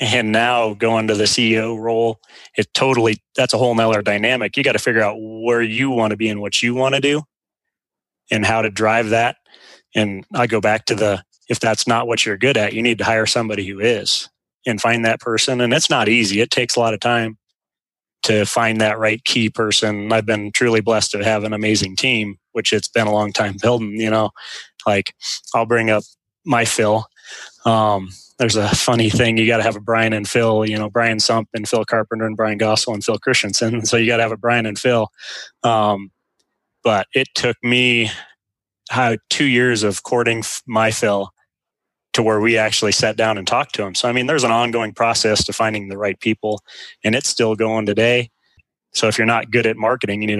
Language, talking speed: English, 215 wpm